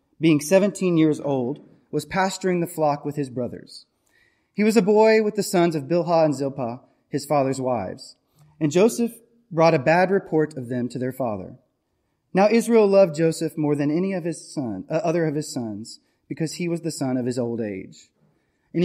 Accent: American